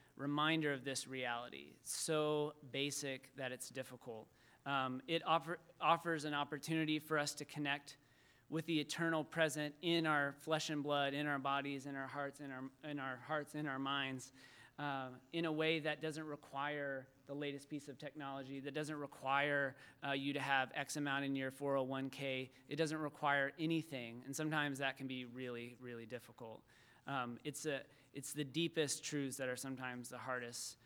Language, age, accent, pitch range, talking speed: English, 30-49, American, 130-155 Hz, 175 wpm